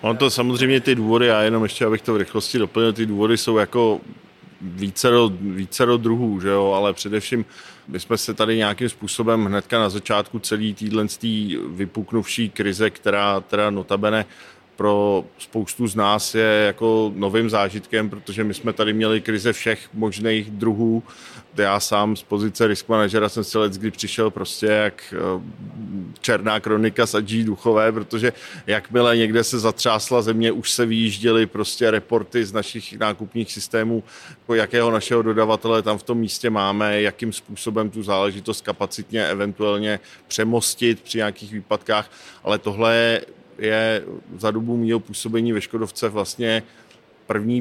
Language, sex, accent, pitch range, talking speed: Czech, male, native, 105-115 Hz, 145 wpm